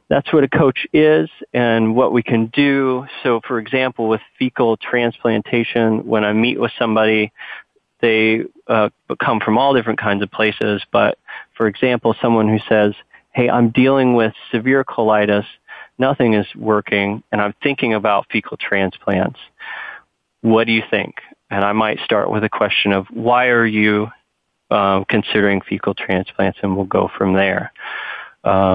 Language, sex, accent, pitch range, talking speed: English, male, American, 100-120 Hz, 160 wpm